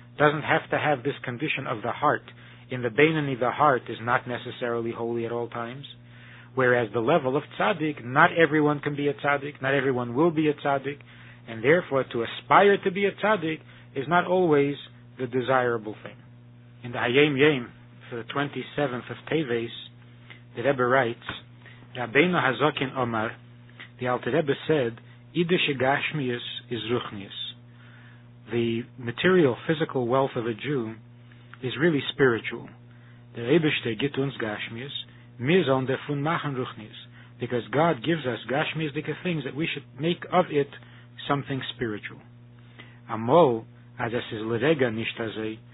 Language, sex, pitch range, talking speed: English, male, 120-145 Hz, 130 wpm